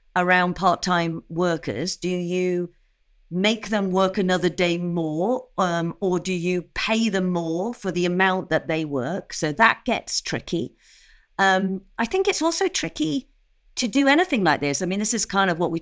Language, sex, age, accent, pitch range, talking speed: English, female, 50-69, British, 165-225 Hz, 180 wpm